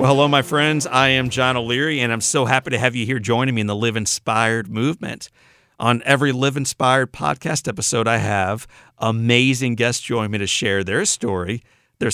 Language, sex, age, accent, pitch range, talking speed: English, male, 40-59, American, 110-130 Hz, 200 wpm